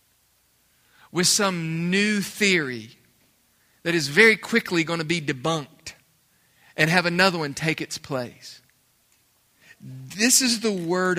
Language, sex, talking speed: English, male, 125 wpm